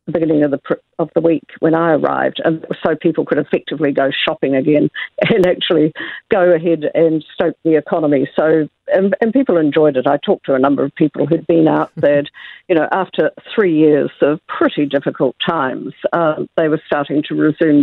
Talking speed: 190 wpm